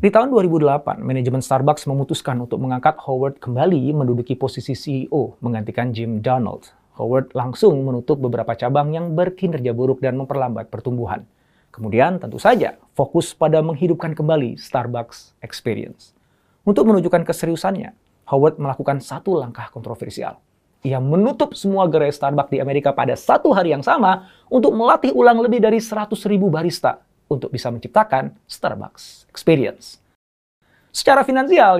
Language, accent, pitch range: Indonesian, native, 125-180 Hz